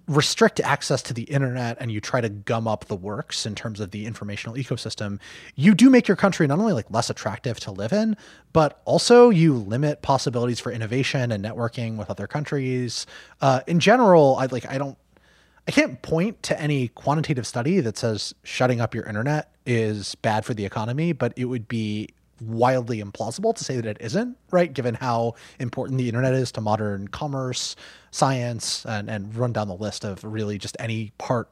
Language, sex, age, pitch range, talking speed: English, male, 30-49, 110-150 Hz, 195 wpm